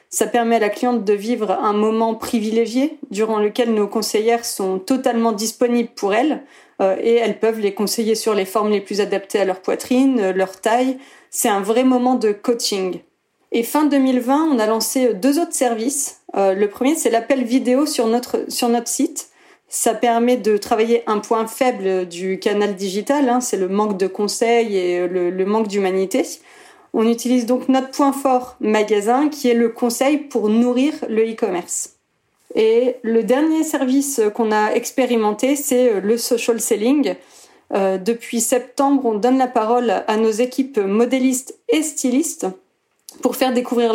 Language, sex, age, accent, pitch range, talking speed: French, female, 30-49, French, 215-255 Hz, 170 wpm